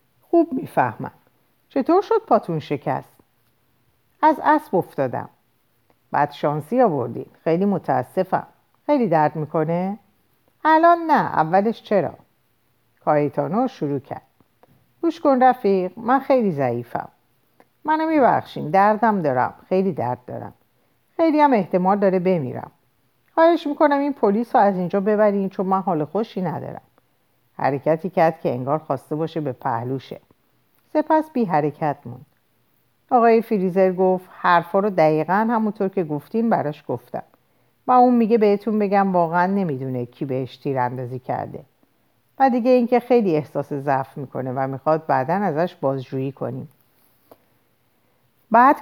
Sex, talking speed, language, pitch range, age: female, 125 wpm, Persian, 145-240 Hz, 50-69